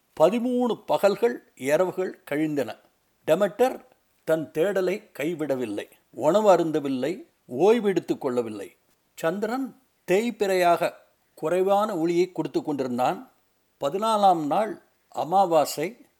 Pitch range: 170-225 Hz